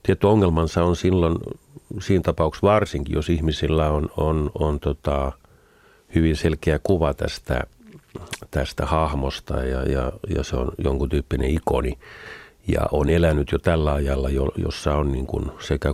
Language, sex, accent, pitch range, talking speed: Finnish, male, native, 80-110 Hz, 130 wpm